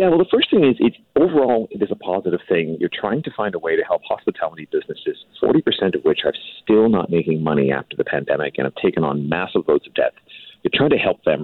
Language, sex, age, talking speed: English, male, 40-59, 245 wpm